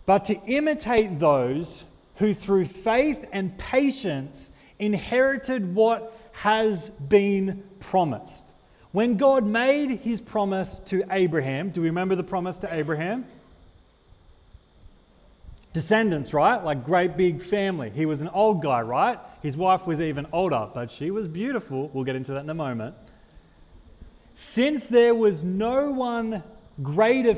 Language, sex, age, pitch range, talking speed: English, male, 30-49, 135-210 Hz, 135 wpm